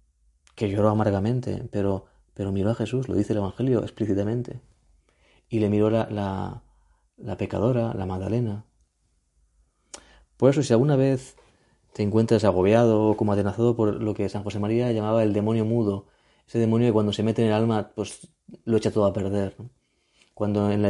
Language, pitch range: Spanish, 100-115 Hz